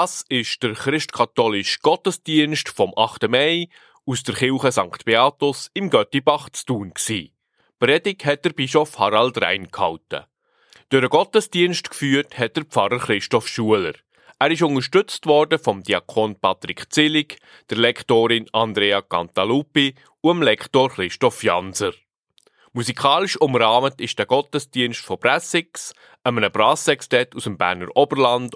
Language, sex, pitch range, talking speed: German, male, 115-150 Hz, 130 wpm